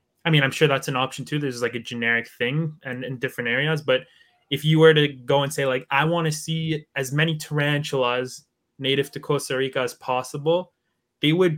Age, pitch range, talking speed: 20-39, 135-155 Hz, 210 wpm